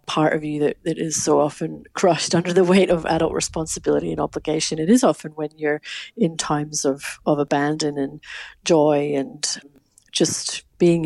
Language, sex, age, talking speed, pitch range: English, female, 40-59, 175 wpm, 150-170 Hz